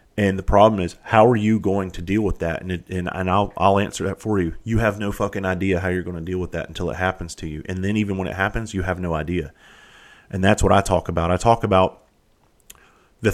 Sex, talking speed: male, 265 wpm